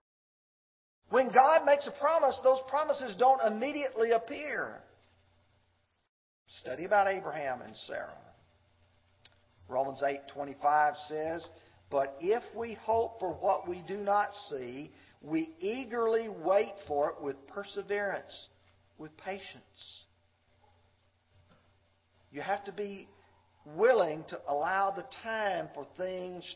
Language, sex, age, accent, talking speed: English, male, 50-69, American, 110 wpm